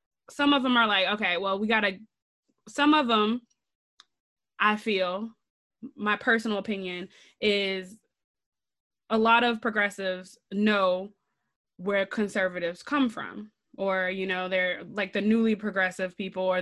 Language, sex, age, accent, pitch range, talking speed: English, female, 20-39, American, 190-235 Hz, 135 wpm